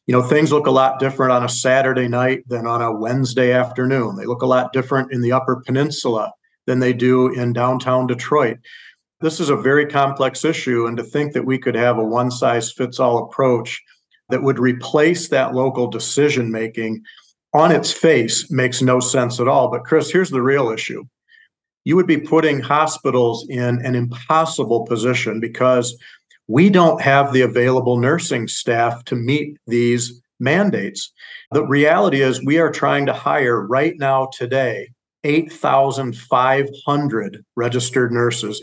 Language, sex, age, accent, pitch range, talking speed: English, male, 50-69, American, 120-140 Hz, 160 wpm